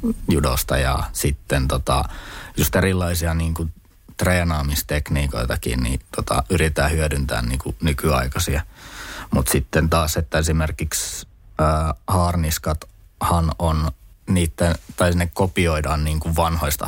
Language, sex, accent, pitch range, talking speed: Finnish, male, native, 75-85 Hz, 95 wpm